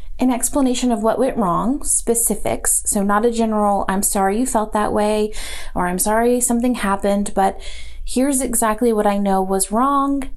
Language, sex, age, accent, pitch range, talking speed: English, female, 30-49, American, 195-245 Hz, 175 wpm